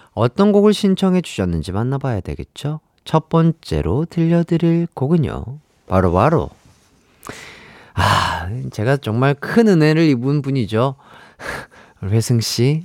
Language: Korean